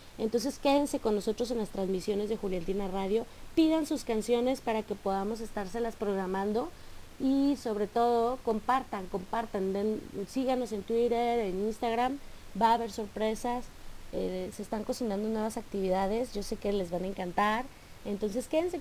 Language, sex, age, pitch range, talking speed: Spanish, female, 30-49, 195-235 Hz, 155 wpm